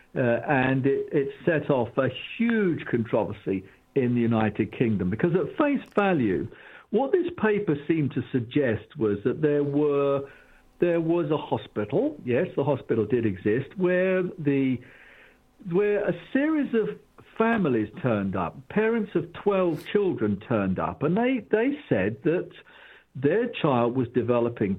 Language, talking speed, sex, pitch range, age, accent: English, 145 wpm, male, 115-170 Hz, 50-69, British